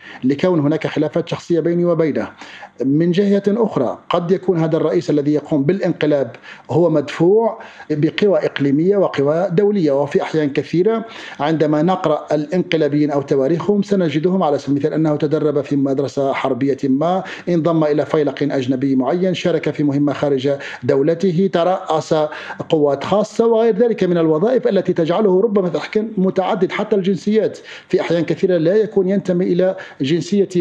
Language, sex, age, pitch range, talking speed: Arabic, male, 50-69, 145-190 Hz, 140 wpm